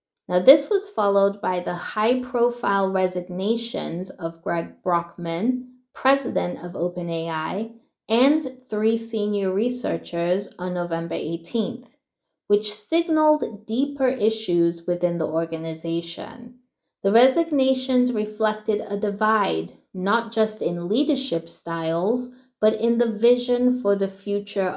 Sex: female